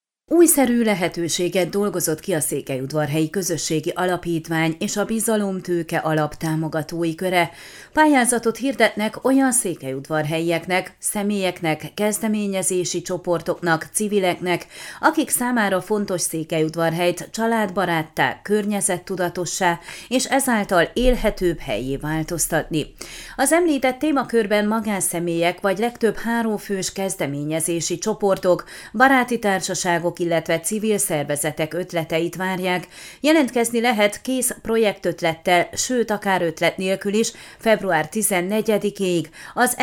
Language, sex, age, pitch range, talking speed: Hungarian, female, 30-49, 165-220 Hz, 95 wpm